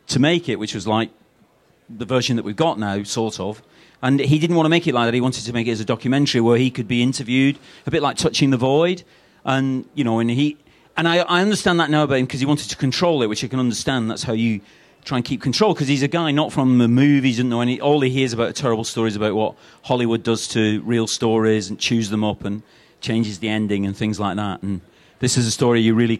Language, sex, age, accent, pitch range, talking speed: English, male, 40-59, British, 115-145 Hz, 260 wpm